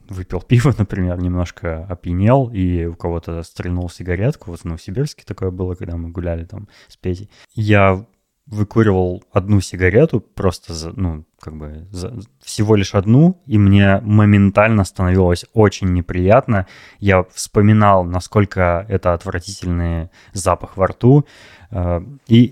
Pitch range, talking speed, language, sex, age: 90-110 Hz, 130 wpm, Russian, male, 20-39